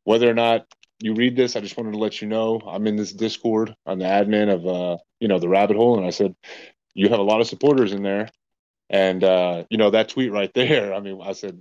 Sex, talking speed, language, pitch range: male, 260 wpm, English, 100-115 Hz